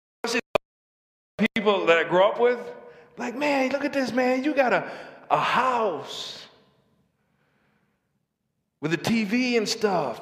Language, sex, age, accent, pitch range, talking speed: English, male, 40-59, American, 165-245 Hz, 130 wpm